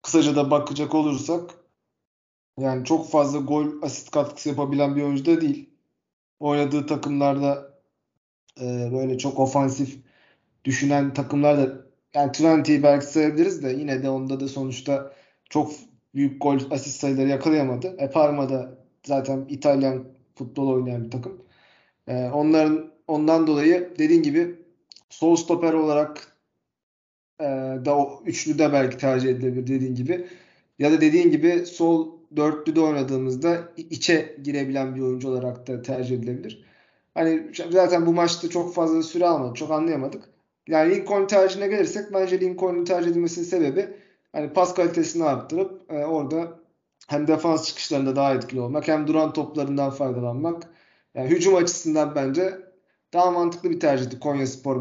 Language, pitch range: Turkish, 135-170 Hz